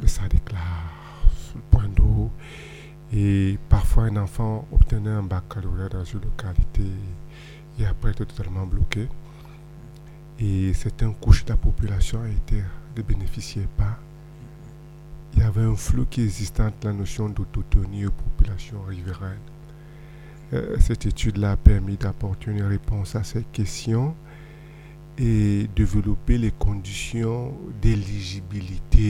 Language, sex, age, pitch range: French, male, 50-69, 100-125 Hz